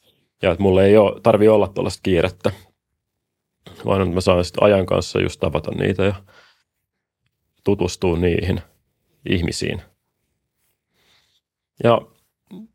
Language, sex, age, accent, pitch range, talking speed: Finnish, male, 30-49, native, 90-110 Hz, 110 wpm